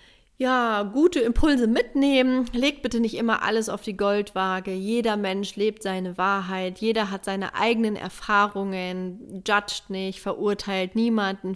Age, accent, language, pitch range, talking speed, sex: 30-49, German, German, 190-215 Hz, 135 wpm, female